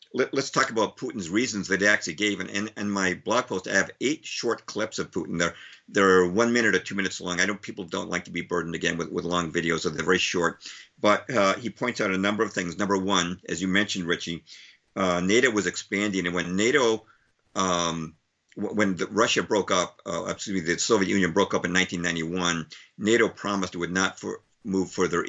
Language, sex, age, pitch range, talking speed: English, male, 50-69, 90-100 Hz, 220 wpm